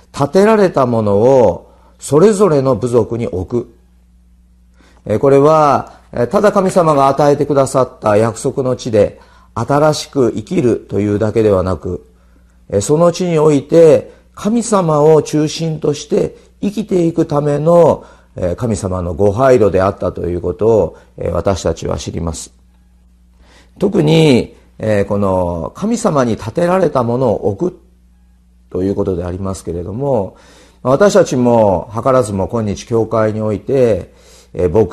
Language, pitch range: Japanese, 90-135 Hz